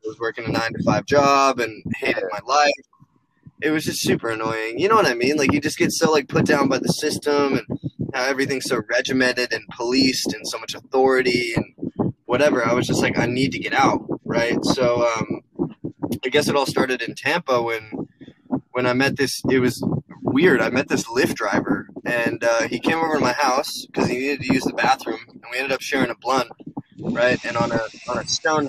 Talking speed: 220 wpm